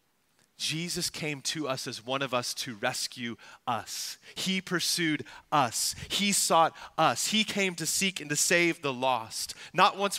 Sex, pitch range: male, 130-180 Hz